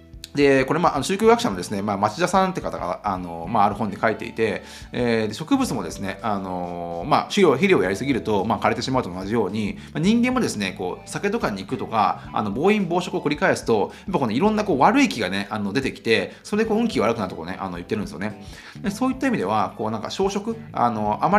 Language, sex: Japanese, male